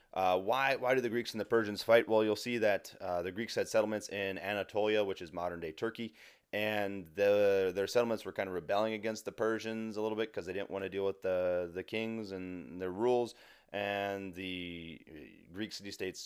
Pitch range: 85-105 Hz